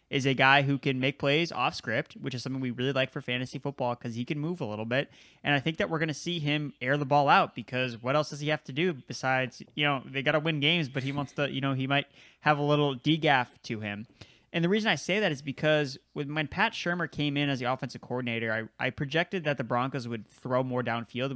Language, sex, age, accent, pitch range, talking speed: English, male, 20-39, American, 130-155 Hz, 265 wpm